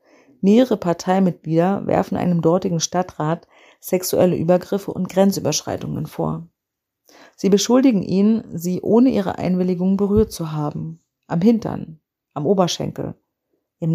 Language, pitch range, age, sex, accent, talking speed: German, 165-195 Hz, 40-59, female, German, 110 wpm